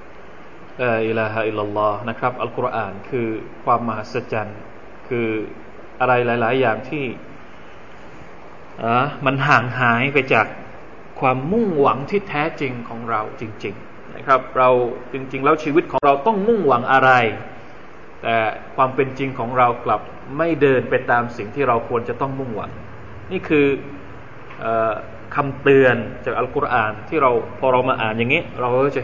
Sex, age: male, 20-39